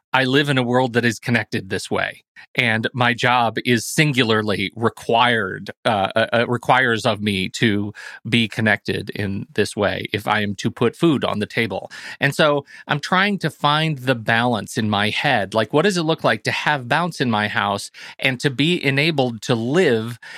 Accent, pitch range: American, 115-145 Hz